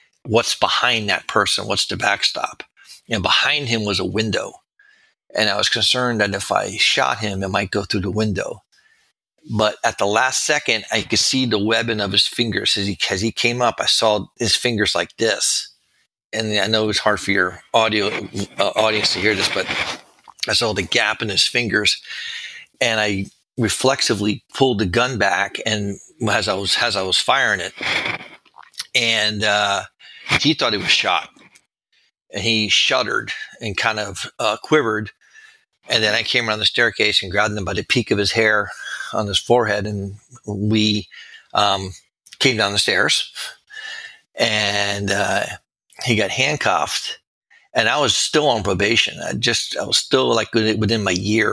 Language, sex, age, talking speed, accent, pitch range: English, male, 40-59, 180 wpm, American, 100-120 Hz